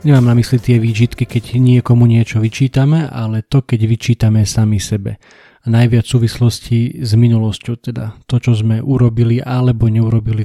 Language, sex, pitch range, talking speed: Slovak, male, 115-125 Hz, 155 wpm